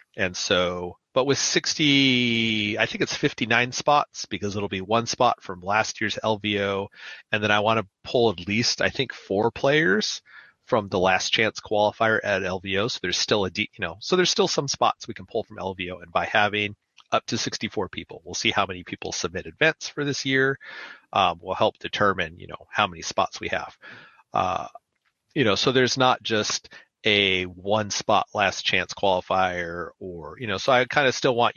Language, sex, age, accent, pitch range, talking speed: English, male, 30-49, American, 95-115 Hz, 200 wpm